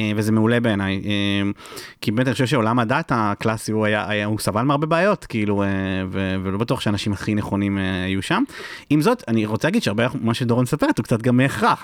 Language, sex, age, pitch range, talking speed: Hebrew, male, 30-49, 105-125 Hz, 190 wpm